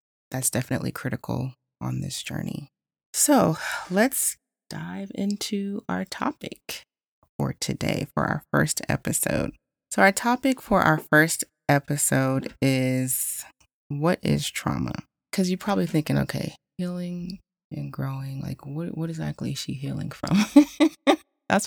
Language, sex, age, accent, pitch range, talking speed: English, female, 30-49, American, 125-160 Hz, 125 wpm